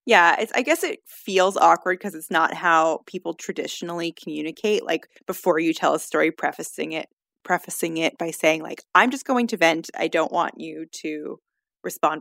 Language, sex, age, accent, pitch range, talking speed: English, female, 20-39, American, 160-240 Hz, 185 wpm